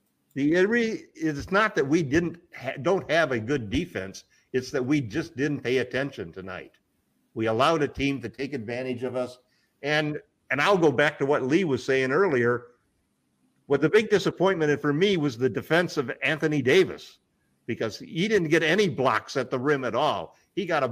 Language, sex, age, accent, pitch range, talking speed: English, male, 50-69, American, 115-150 Hz, 190 wpm